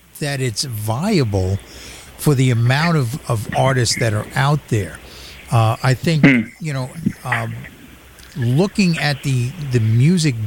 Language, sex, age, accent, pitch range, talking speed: English, male, 50-69, American, 110-155 Hz, 140 wpm